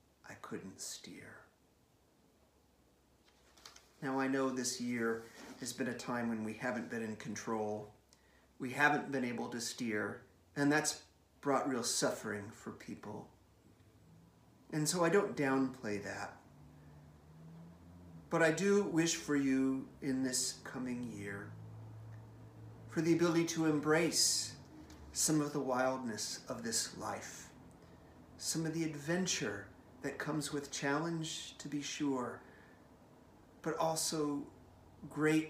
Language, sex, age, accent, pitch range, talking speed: English, male, 40-59, American, 105-145 Hz, 120 wpm